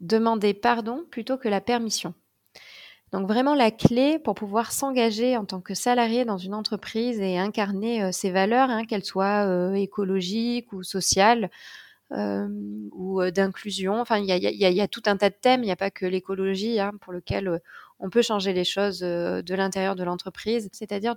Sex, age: female, 20-39